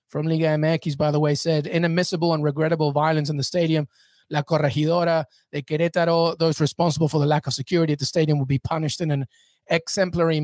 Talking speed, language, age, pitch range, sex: 195 wpm, English, 30-49, 160-200 Hz, male